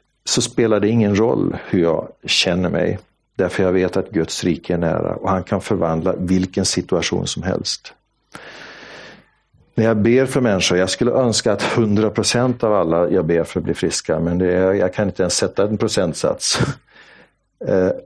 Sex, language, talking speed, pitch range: male, Swedish, 175 wpm, 90-105 Hz